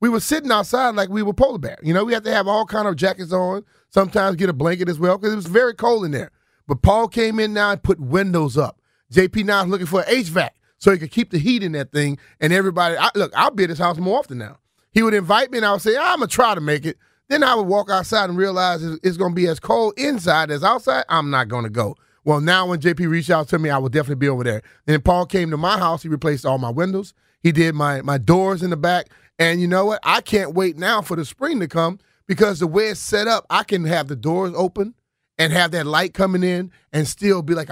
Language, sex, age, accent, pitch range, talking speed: English, male, 30-49, American, 155-200 Hz, 280 wpm